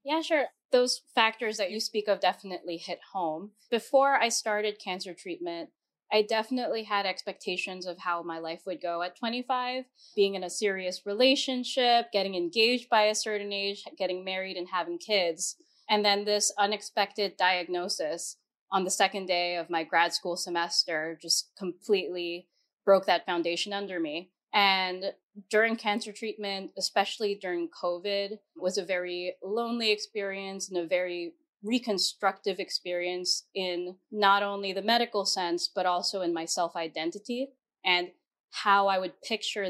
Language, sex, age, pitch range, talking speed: English, female, 20-39, 180-220 Hz, 150 wpm